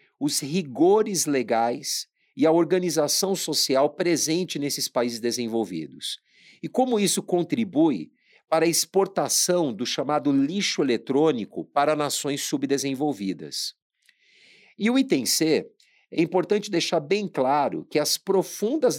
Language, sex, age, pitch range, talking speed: Portuguese, male, 50-69, 135-180 Hz, 115 wpm